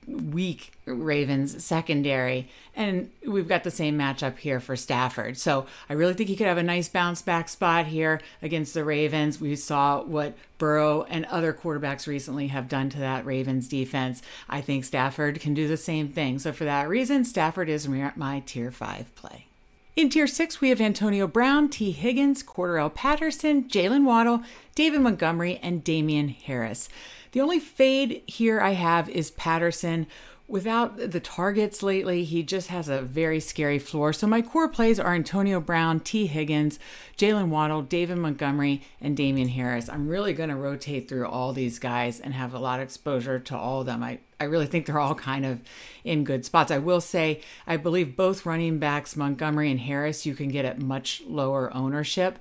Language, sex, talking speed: English, female, 185 wpm